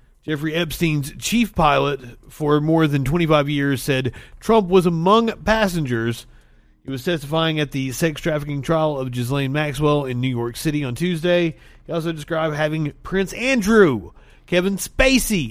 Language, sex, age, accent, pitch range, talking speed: English, male, 40-59, American, 135-180 Hz, 150 wpm